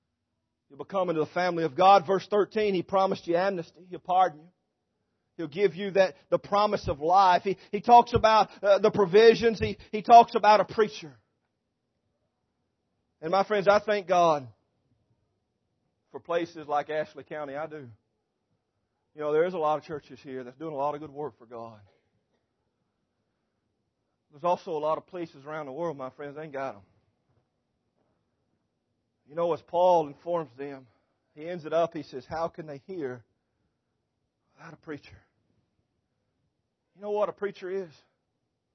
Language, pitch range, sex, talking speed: English, 125-180 Hz, male, 165 wpm